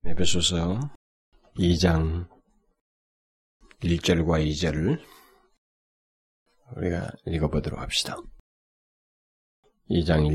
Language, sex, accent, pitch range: Korean, male, native, 80-95 Hz